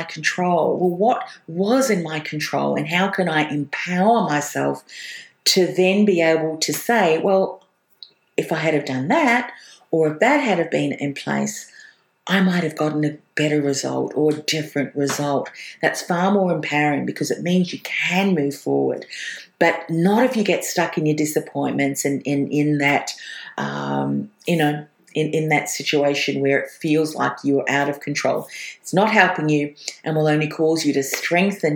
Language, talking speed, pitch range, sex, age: English, 180 wpm, 145-180 Hz, female, 50-69